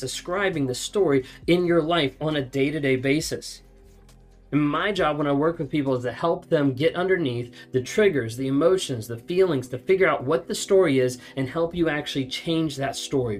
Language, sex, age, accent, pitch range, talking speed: English, male, 20-39, American, 125-155 Hz, 195 wpm